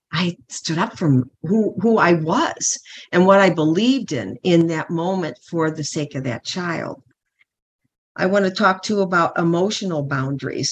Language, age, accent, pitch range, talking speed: English, 50-69, American, 150-180 Hz, 175 wpm